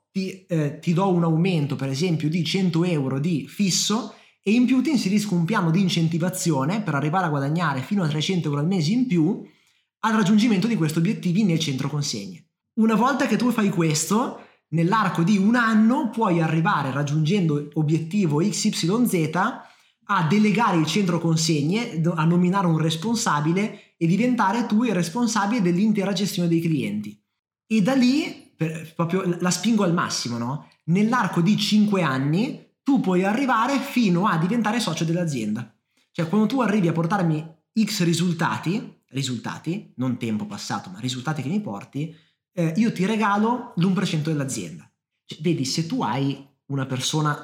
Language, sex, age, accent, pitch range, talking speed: Italian, male, 20-39, native, 155-205 Hz, 160 wpm